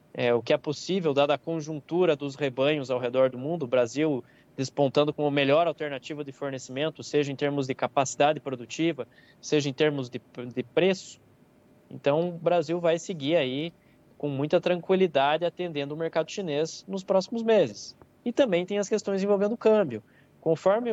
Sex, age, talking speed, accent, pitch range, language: male, 20-39, 170 wpm, Brazilian, 135-175 Hz, Portuguese